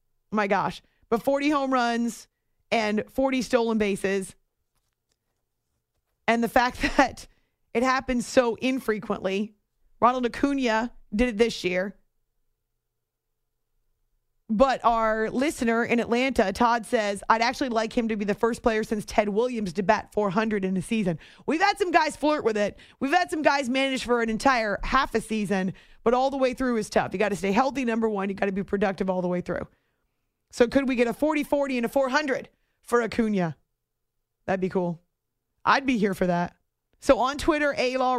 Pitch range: 210-260 Hz